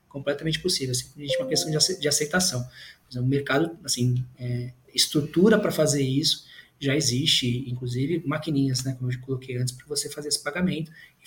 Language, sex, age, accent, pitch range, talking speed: Portuguese, male, 20-39, Brazilian, 130-185 Hz, 170 wpm